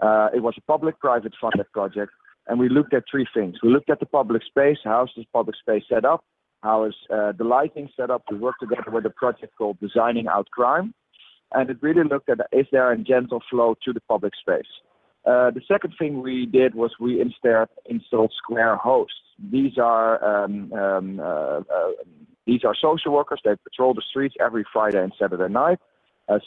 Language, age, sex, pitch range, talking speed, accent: English, 40-59, male, 105-135 Hz, 200 wpm, Dutch